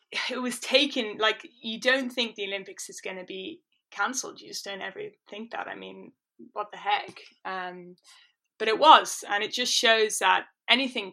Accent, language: British, English